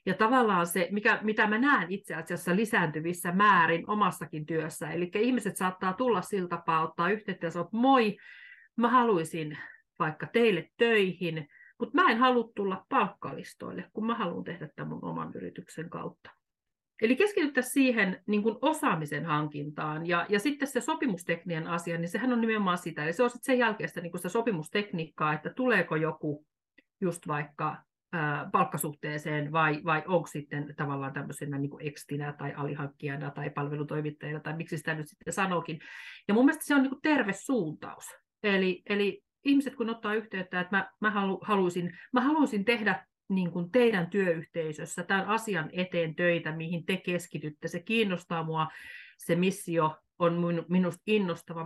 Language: Finnish